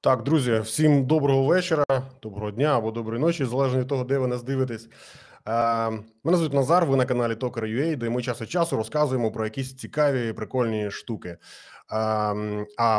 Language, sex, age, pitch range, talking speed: Ukrainian, male, 20-39, 105-135 Hz, 170 wpm